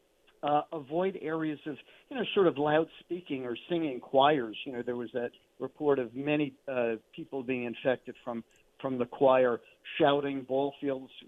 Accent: American